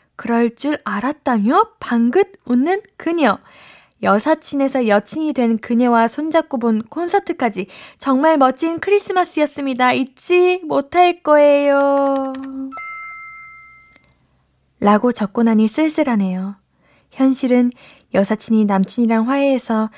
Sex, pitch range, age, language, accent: female, 215-300 Hz, 10-29, Korean, native